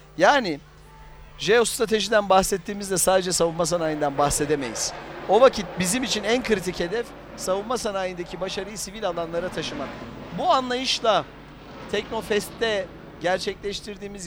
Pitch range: 160-220 Hz